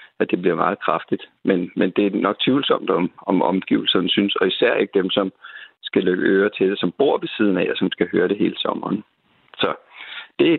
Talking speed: 220 wpm